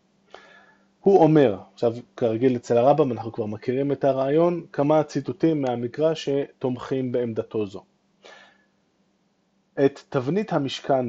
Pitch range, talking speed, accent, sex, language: 115-150 Hz, 110 wpm, native, male, Hebrew